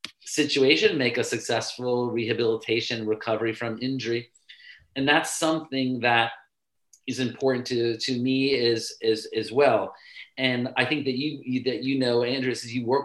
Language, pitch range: English, 115-135 Hz